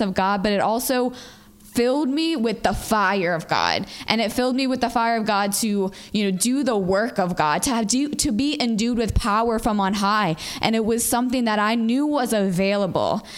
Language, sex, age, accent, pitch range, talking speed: English, female, 10-29, American, 210-245 Hz, 220 wpm